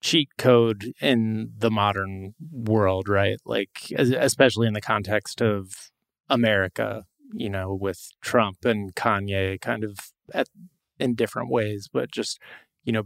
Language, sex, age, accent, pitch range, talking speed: English, male, 30-49, American, 105-120 Hz, 140 wpm